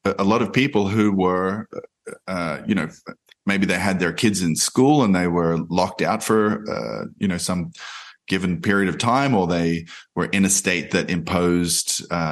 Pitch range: 85-105 Hz